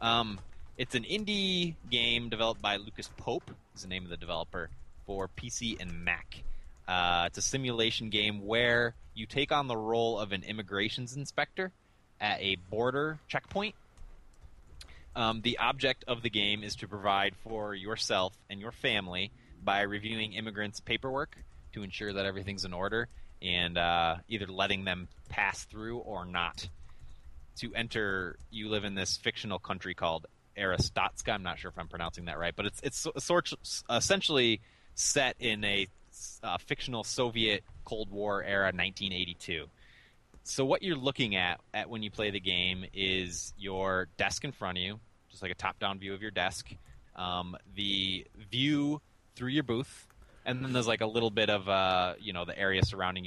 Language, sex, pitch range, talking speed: English, male, 90-115 Hz, 170 wpm